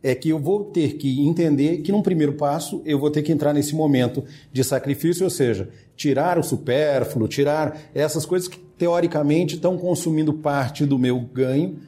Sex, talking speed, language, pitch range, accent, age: male, 180 wpm, Portuguese, 120-155 Hz, Brazilian, 40-59